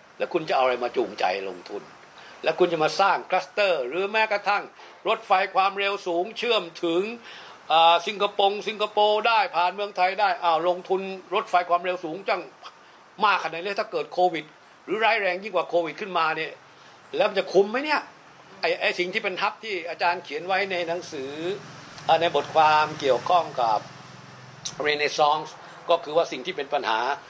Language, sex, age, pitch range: Thai, male, 60-79, 150-195 Hz